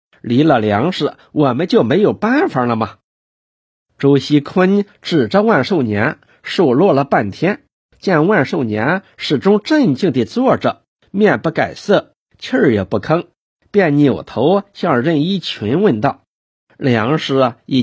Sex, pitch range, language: male, 125-175 Hz, Chinese